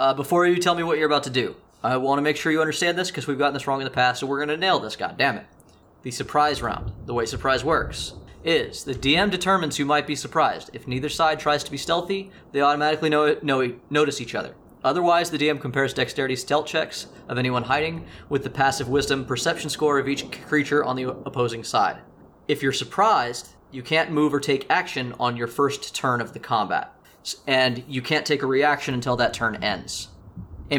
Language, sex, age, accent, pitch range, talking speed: English, male, 20-39, American, 125-150 Hz, 215 wpm